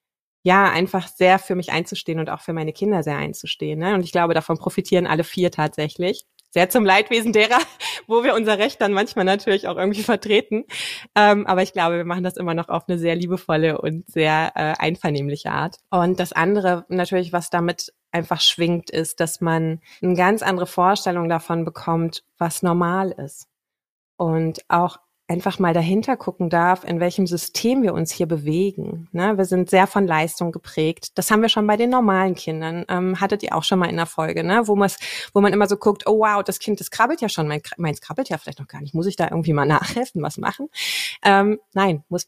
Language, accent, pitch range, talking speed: German, German, 170-195 Hz, 200 wpm